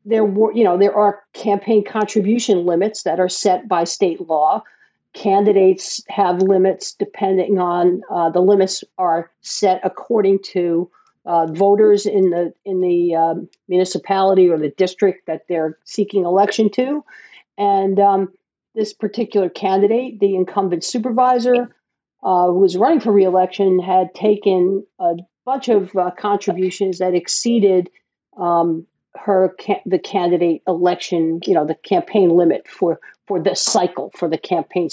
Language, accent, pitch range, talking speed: English, American, 170-205 Hz, 145 wpm